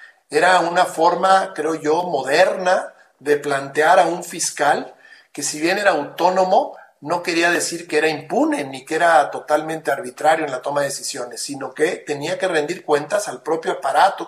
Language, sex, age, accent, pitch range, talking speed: Spanish, male, 50-69, Mexican, 150-185 Hz, 170 wpm